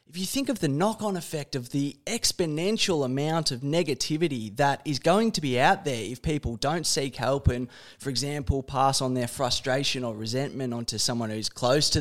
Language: English